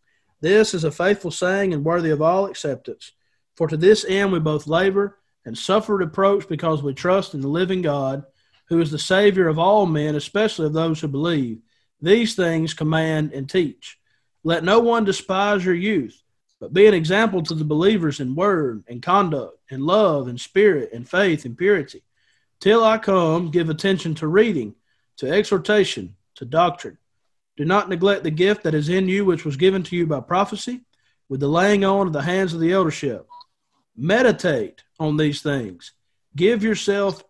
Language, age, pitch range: English, 40-59, 150-195 Hz